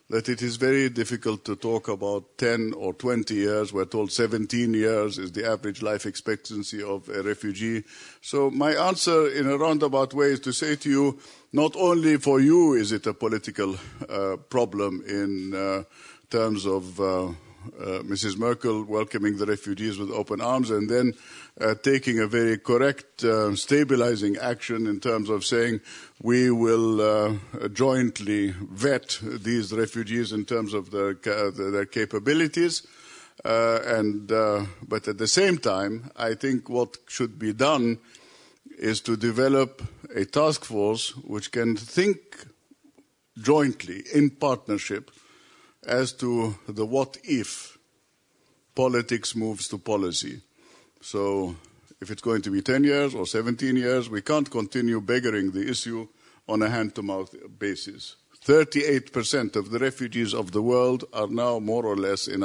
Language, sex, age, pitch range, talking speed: English, male, 50-69, 105-130 Hz, 150 wpm